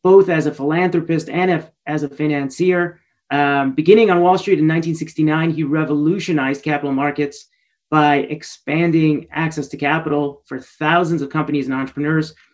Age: 30-49